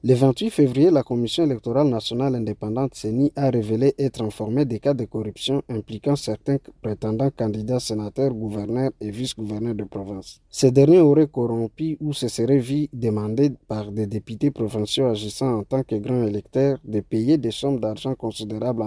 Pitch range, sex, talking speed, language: 110-145 Hz, male, 165 wpm, French